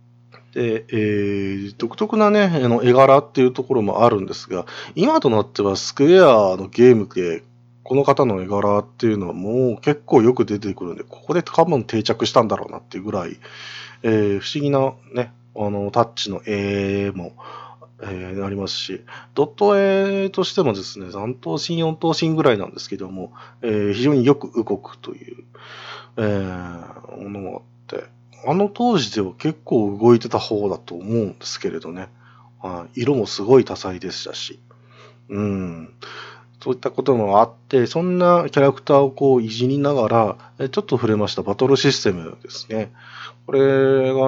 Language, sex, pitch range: Japanese, male, 100-135 Hz